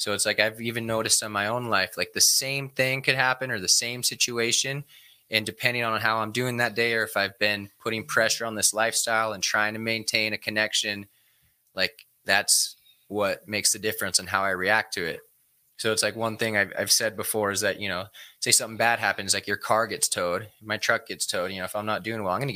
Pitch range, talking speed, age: 105-130 Hz, 240 wpm, 20-39